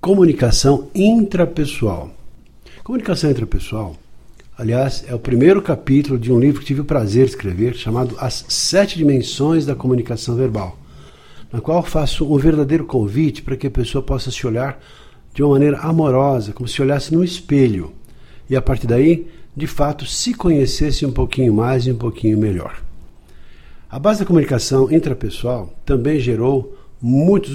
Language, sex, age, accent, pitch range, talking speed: Portuguese, male, 60-79, Brazilian, 120-155 Hz, 150 wpm